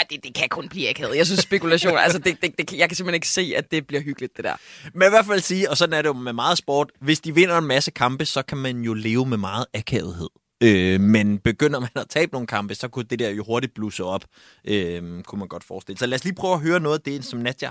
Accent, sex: native, male